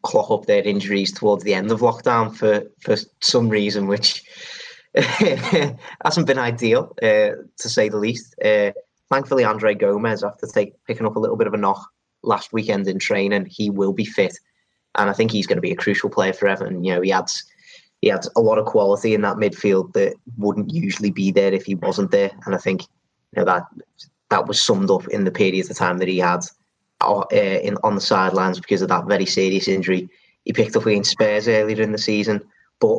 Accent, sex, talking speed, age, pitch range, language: British, male, 215 wpm, 20-39, 100-115 Hz, English